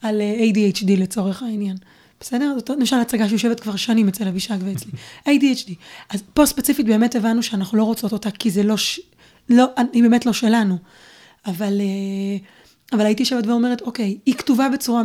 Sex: female